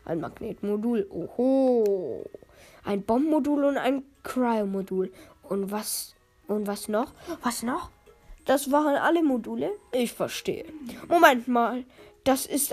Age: 10-29